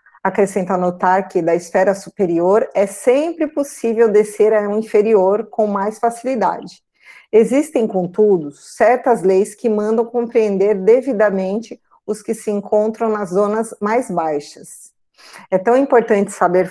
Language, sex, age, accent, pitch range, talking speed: Portuguese, female, 50-69, Brazilian, 190-230 Hz, 130 wpm